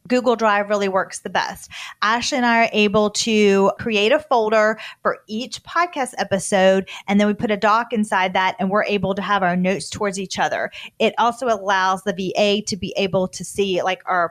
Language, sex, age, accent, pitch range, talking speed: English, female, 30-49, American, 195-235 Hz, 205 wpm